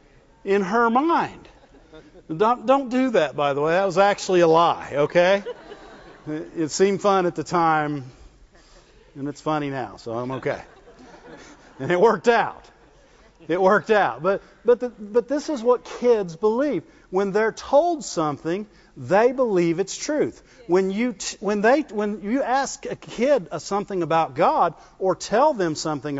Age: 50-69